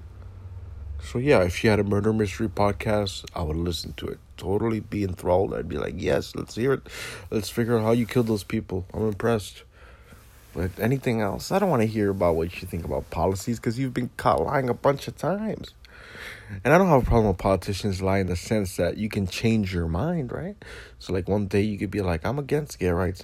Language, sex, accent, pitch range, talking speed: English, male, American, 90-115 Hz, 225 wpm